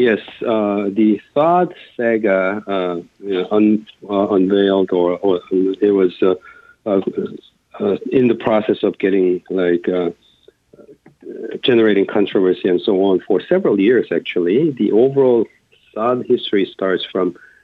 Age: 50-69